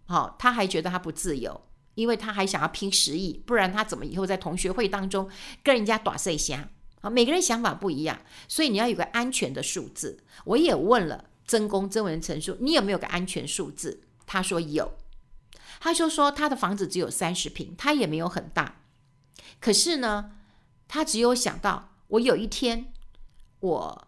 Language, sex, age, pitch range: Chinese, female, 50-69, 175-230 Hz